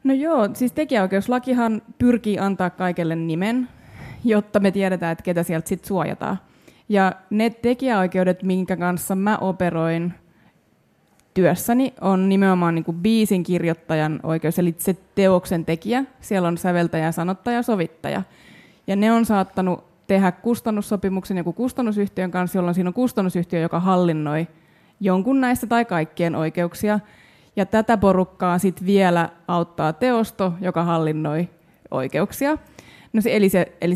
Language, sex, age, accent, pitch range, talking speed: Finnish, female, 20-39, native, 175-215 Hz, 135 wpm